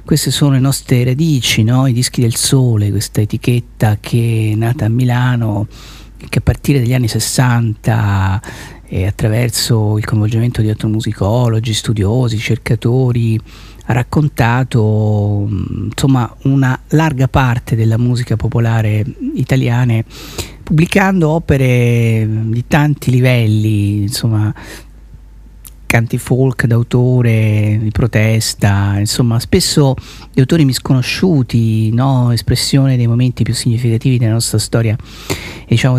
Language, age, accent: Italian, 50-69, native